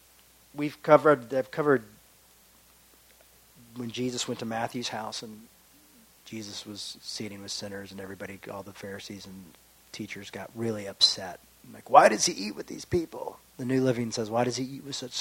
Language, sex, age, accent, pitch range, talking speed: English, male, 40-59, American, 105-130 Hz, 180 wpm